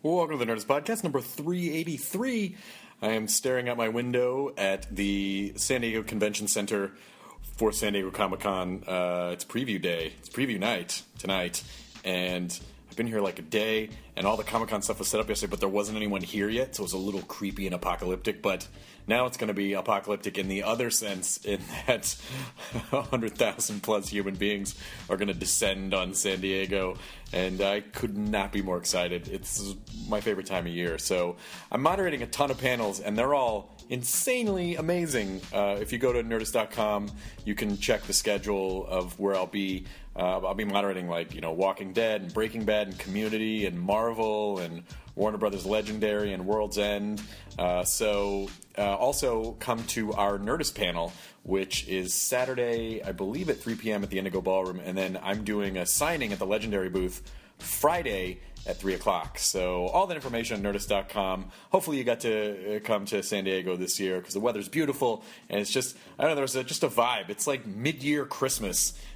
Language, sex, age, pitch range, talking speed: English, male, 30-49, 95-115 Hz, 185 wpm